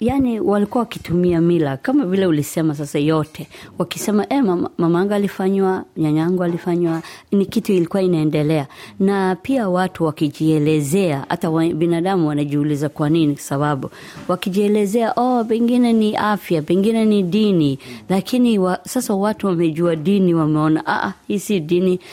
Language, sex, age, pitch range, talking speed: Swahili, female, 20-39, 155-195 Hz, 130 wpm